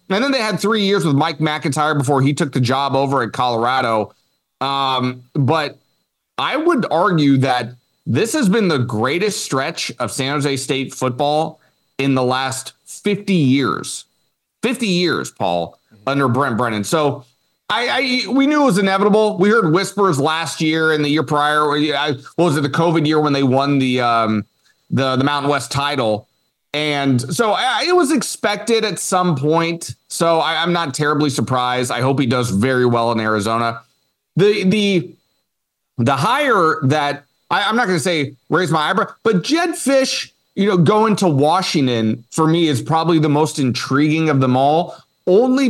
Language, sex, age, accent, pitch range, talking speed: English, male, 30-49, American, 130-180 Hz, 175 wpm